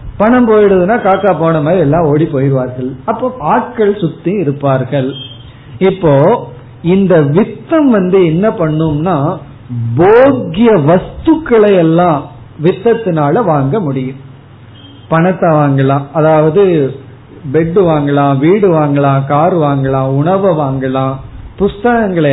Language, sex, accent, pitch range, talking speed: Tamil, male, native, 140-190 Hz, 95 wpm